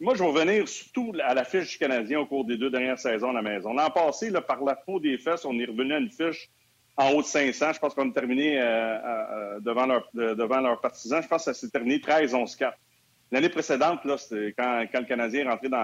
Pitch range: 125-165 Hz